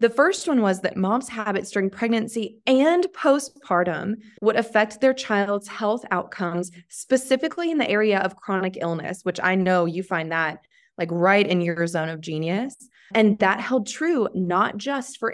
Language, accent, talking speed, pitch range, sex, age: English, American, 170 wpm, 175-220 Hz, female, 20-39